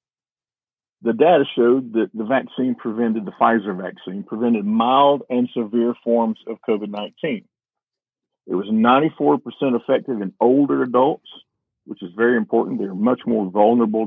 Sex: male